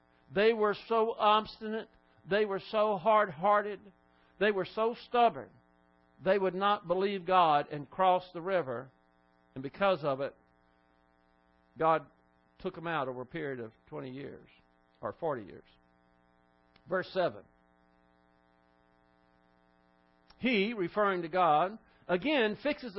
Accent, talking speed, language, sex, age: American, 120 wpm, English, male, 50-69